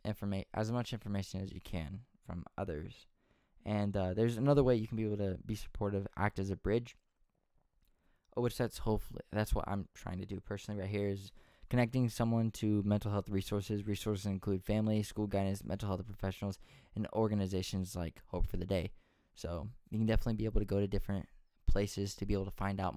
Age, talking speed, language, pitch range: 10-29, 195 wpm, English, 100-110 Hz